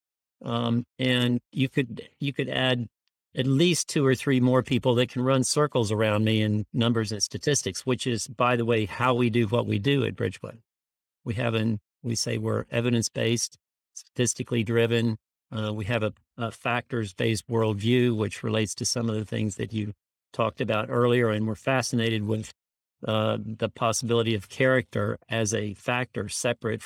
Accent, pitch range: American, 110-130 Hz